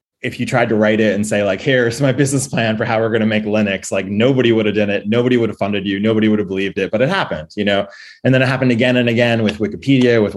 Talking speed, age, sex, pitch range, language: 295 wpm, 20-39, male, 100-125 Hz, English